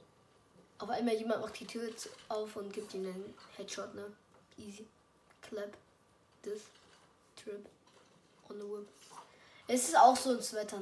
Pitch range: 205-280 Hz